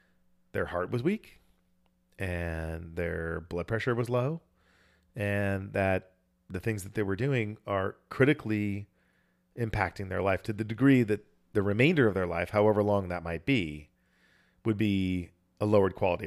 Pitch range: 90-105 Hz